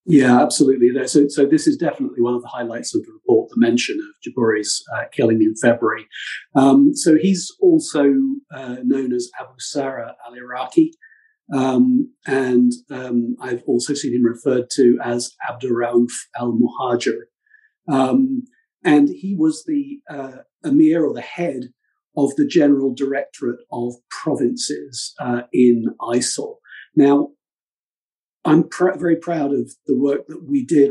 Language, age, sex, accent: English, 40-59, male, British